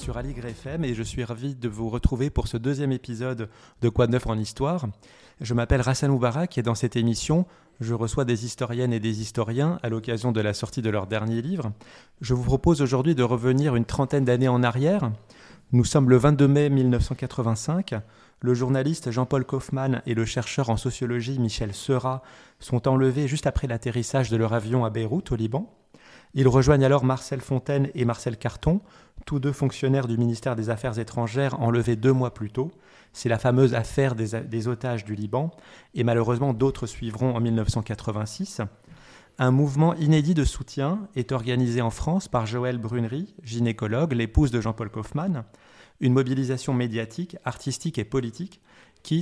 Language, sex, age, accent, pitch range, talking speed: French, male, 20-39, French, 115-140 Hz, 175 wpm